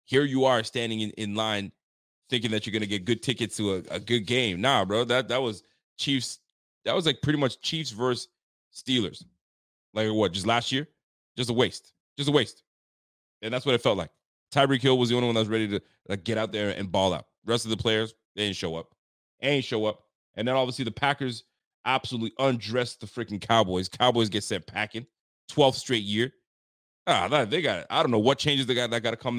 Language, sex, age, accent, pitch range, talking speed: English, male, 30-49, American, 105-130 Hz, 225 wpm